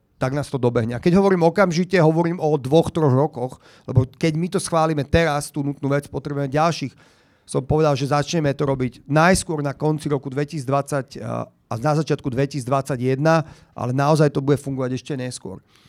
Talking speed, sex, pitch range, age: 175 wpm, male, 140-165 Hz, 40-59